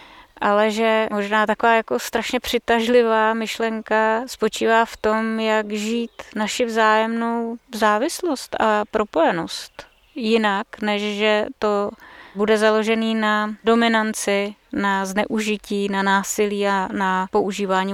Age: 20-39